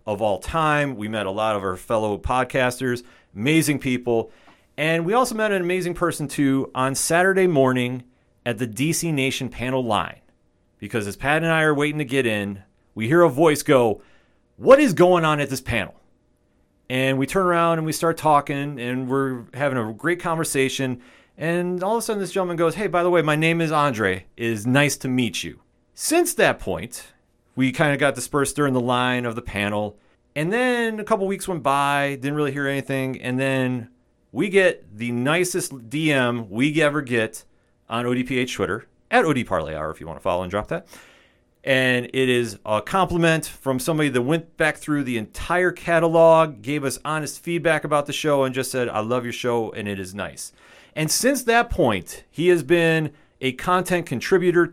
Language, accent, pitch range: English, American, 120-165 Hz